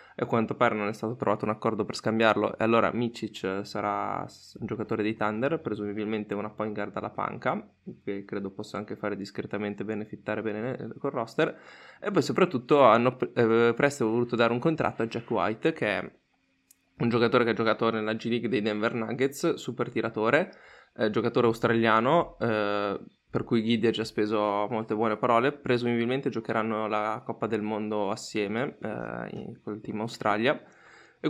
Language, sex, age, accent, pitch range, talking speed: Italian, male, 20-39, native, 105-115 Hz, 175 wpm